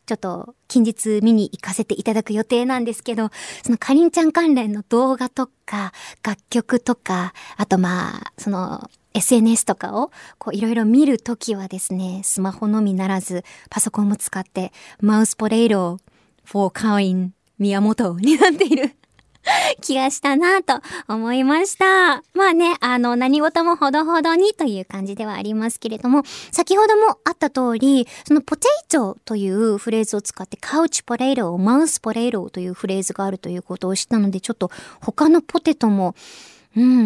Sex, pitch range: male, 205-300 Hz